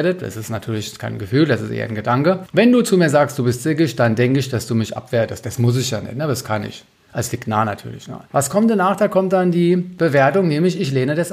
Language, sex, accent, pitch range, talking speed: German, male, German, 120-165 Hz, 270 wpm